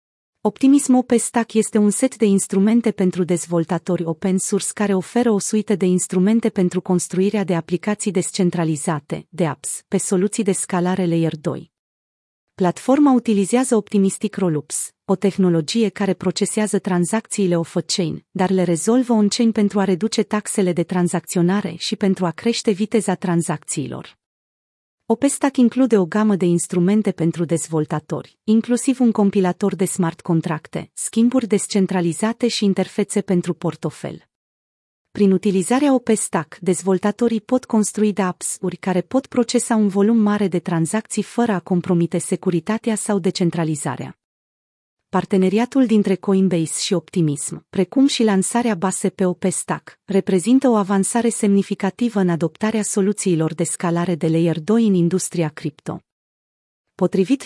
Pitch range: 175-215 Hz